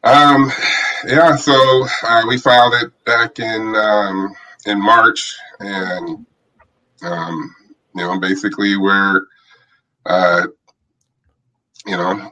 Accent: American